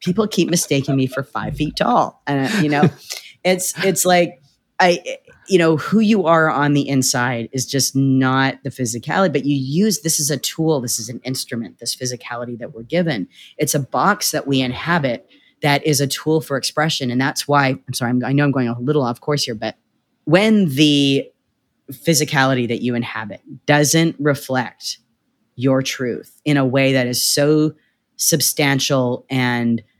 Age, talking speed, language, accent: 30-49, 180 wpm, English, American